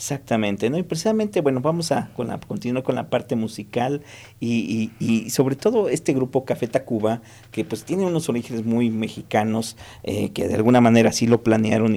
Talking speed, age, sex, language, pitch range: 185 wpm, 50-69, male, Spanish, 115-145 Hz